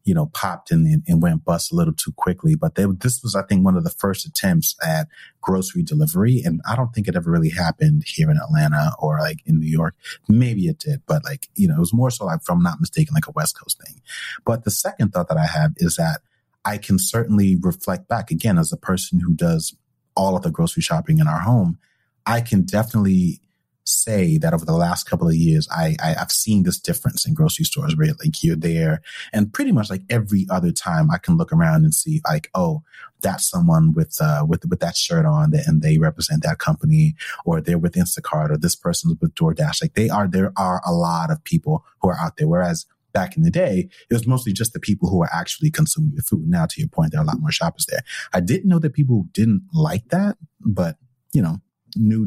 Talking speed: 240 wpm